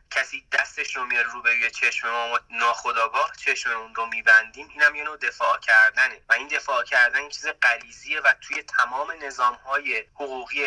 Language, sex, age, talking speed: Persian, male, 30-49, 175 wpm